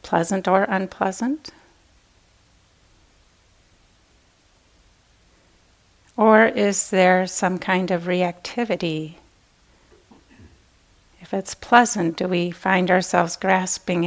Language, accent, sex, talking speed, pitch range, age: English, American, female, 75 wpm, 155-185 Hz, 40-59